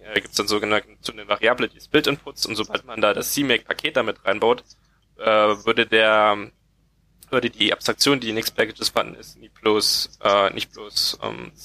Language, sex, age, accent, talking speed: German, male, 10-29, German, 175 wpm